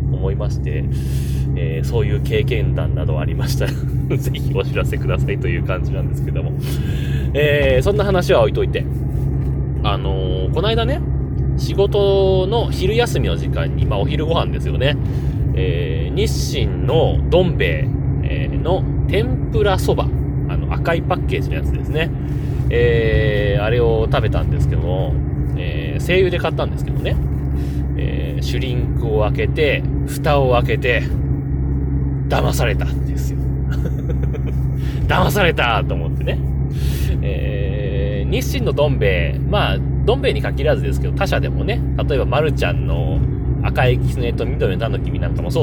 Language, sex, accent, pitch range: Japanese, male, native, 65-70 Hz